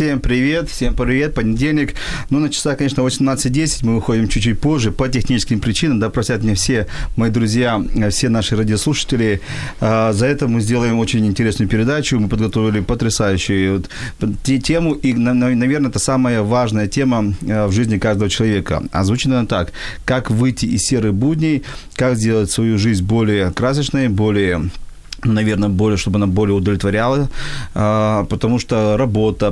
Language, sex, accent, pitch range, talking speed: Ukrainian, male, native, 105-130 Hz, 145 wpm